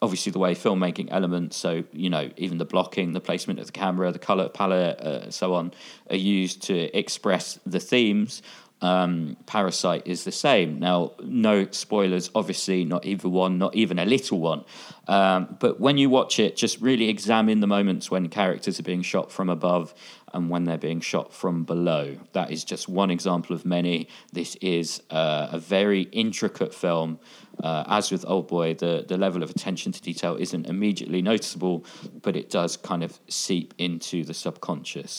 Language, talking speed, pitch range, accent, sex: English, 185 wpm, 85-100 Hz, British, male